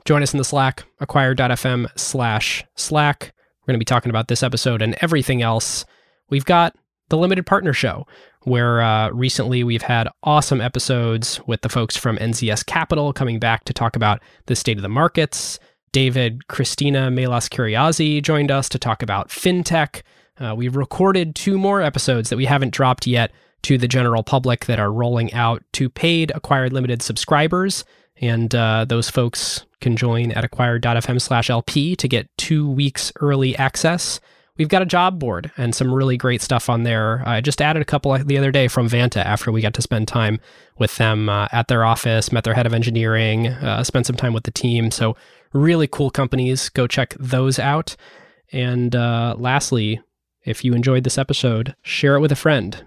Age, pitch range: 20-39, 115-140 Hz